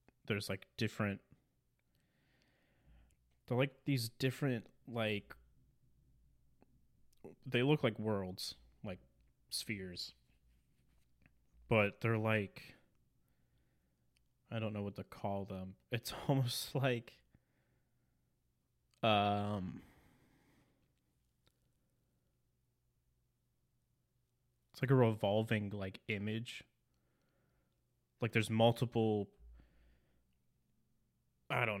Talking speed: 75 wpm